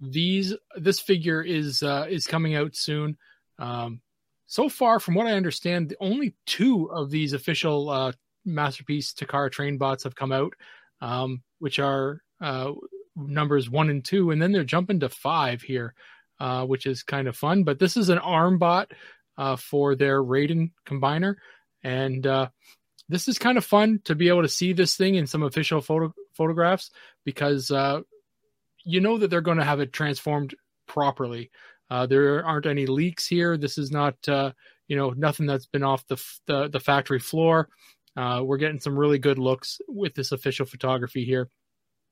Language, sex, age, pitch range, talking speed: English, male, 30-49, 135-175 Hz, 180 wpm